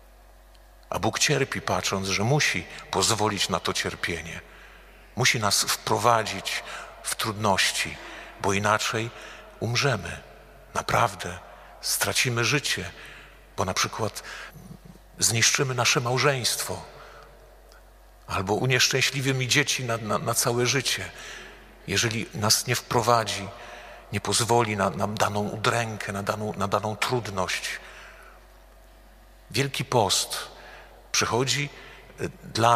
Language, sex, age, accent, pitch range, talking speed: Polish, male, 50-69, native, 95-120 Hz, 100 wpm